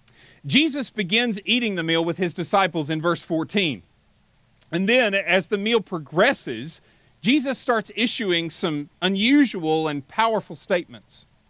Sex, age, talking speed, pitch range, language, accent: male, 40-59, 130 wpm, 165-230 Hz, English, American